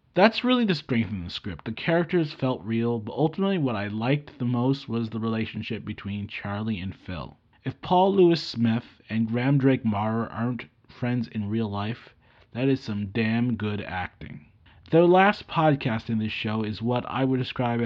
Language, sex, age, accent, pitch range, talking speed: English, male, 30-49, American, 110-135 Hz, 185 wpm